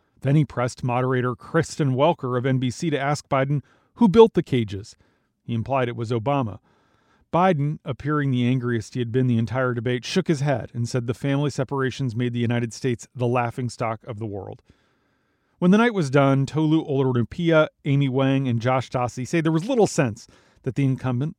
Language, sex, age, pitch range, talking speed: English, male, 40-59, 125-150 Hz, 190 wpm